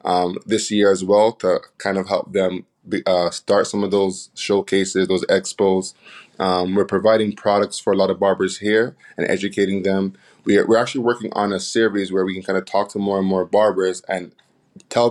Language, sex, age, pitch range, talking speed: English, male, 20-39, 95-105 Hz, 210 wpm